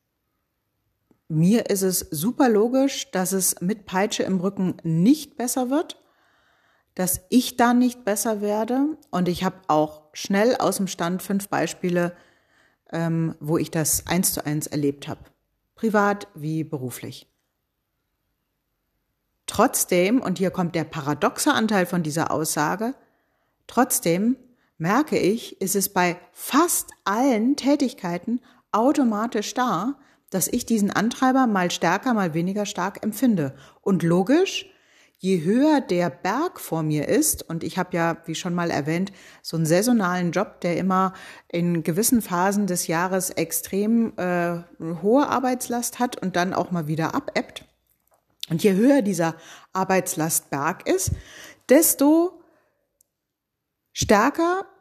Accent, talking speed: German, 130 wpm